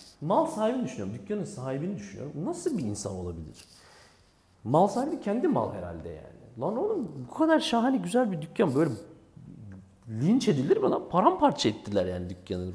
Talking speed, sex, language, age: 155 wpm, male, Turkish, 40-59